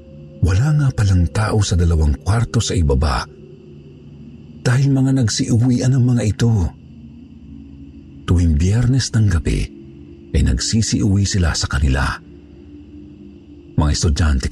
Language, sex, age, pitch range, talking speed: Filipino, male, 50-69, 75-105 Hz, 110 wpm